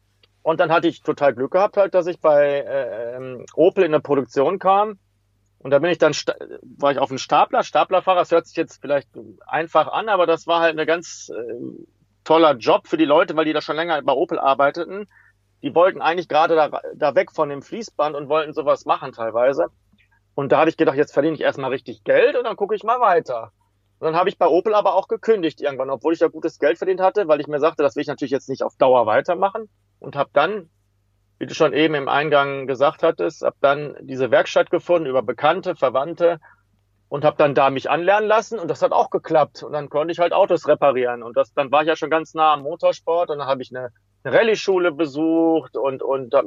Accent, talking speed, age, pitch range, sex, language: German, 230 wpm, 40-59, 135-175 Hz, male, German